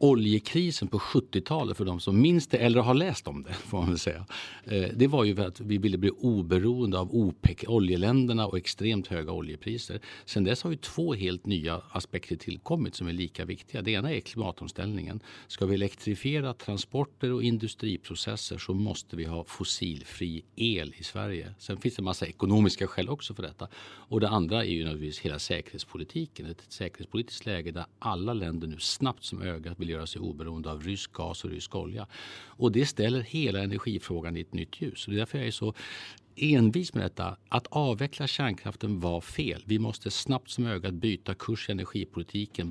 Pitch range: 90-120 Hz